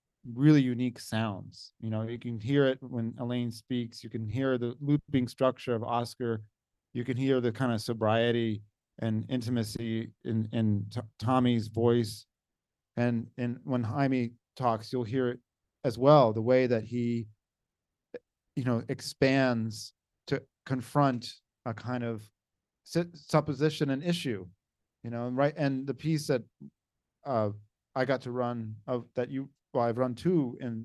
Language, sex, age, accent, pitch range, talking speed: English, male, 40-59, American, 115-140 Hz, 150 wpm